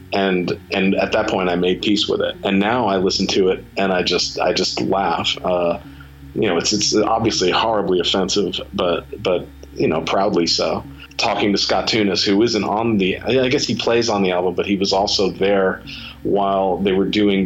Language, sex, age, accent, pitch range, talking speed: English, male, 40-59, American, 85-100 Hz, 205 wpm